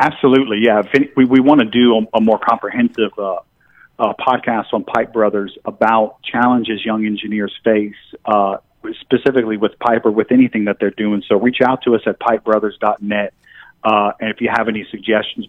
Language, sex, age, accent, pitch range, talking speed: English, male, 40-59, American, 105-125 Hz, 180 wpm